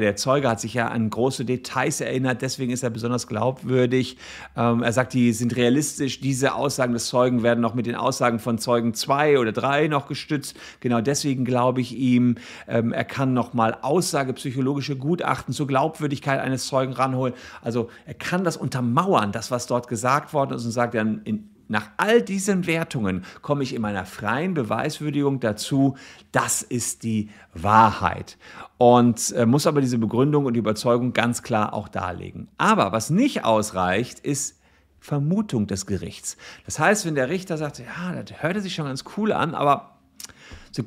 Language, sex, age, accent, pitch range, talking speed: German, male, 50-69, German, 115-155 Hz, 175 wpm